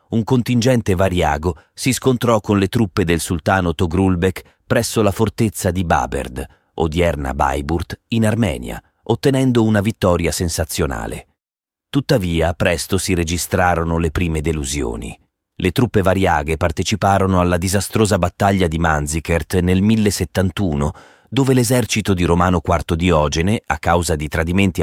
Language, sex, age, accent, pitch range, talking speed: Italian, male, 30-49, native, 80-100 Hz, 125 wpm